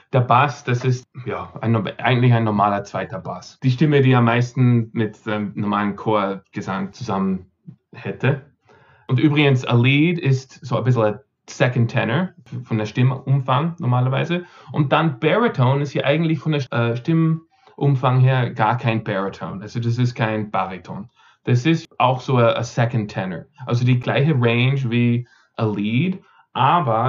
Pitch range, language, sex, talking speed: 120-140 Hz, German, male, 160 wpm